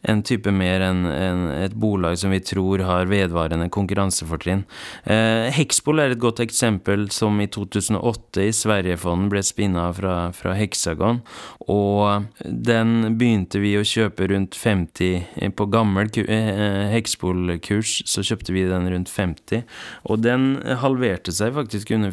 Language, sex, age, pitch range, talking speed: Swedish, male, 30-49, 95-110 Hz, 150 wpm